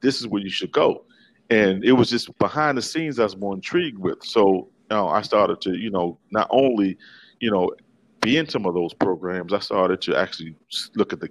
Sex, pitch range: male, 90-110 Hz